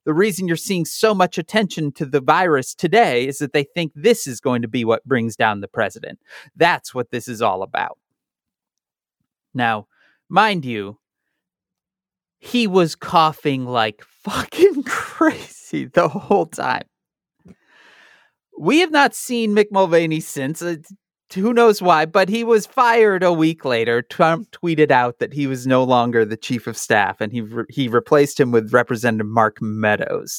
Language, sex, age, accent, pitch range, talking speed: English, male, 30-49, American, 125-195 Hz, 160 wpm